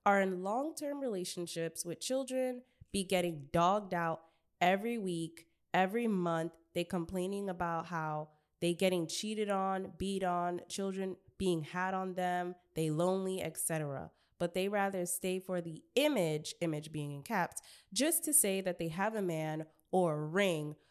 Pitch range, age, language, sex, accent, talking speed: 165-205 Hz, 20-39, English, female, American, 150 wpm